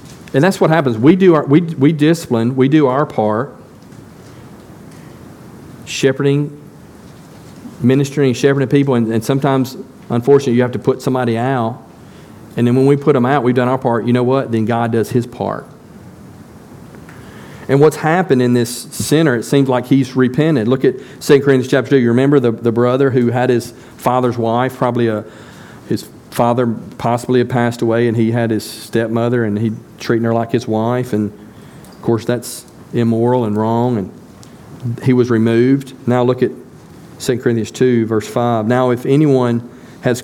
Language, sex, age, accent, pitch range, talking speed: English, male, 40-59, American, 115-135 Hz, 175 wpm